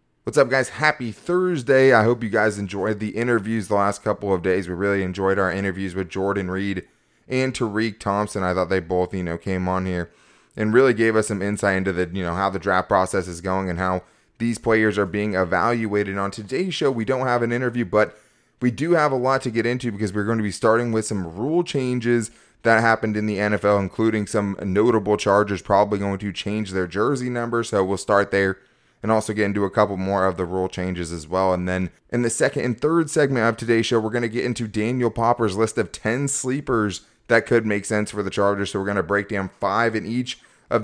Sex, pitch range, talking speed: male, 95-115 Hz, 235 wpm